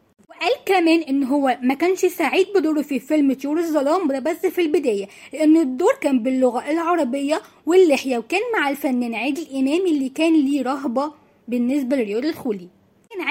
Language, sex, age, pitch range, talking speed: Arabic, female, 20-39, 260-335 Hz, 155 wpm